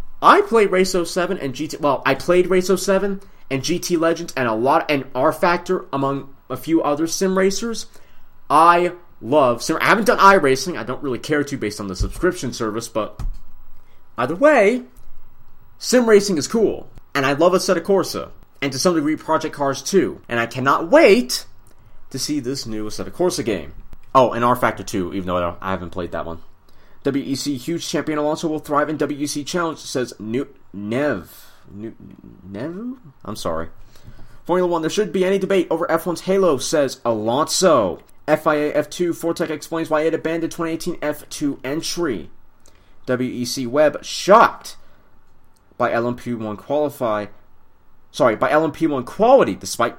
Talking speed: 160 wpm